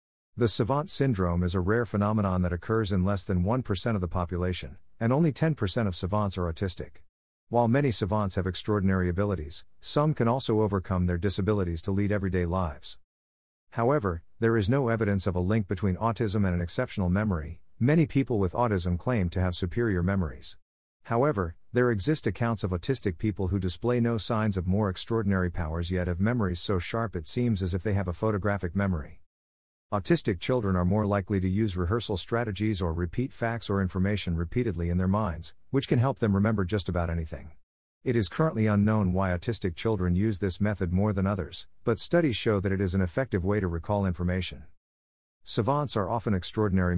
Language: English